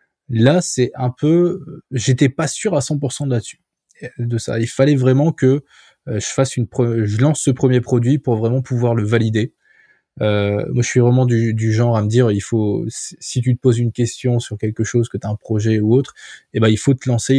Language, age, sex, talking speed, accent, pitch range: French, 20-39, male, 230 wpm, French, 110-130 Hz